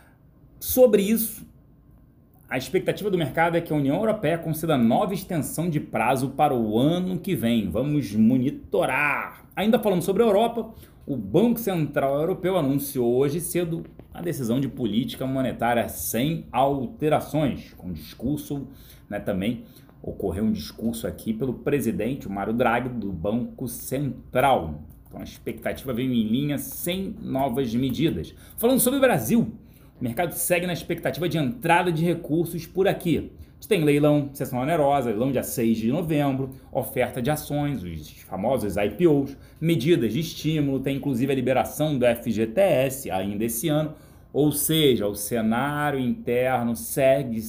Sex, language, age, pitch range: male, Portuguese, 30-49, 125-170 Hz